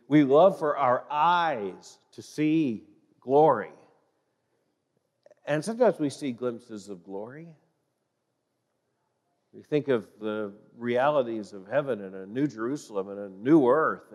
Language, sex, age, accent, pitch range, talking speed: English, male, 50-69, American, 115-150 Hz, 125 wpm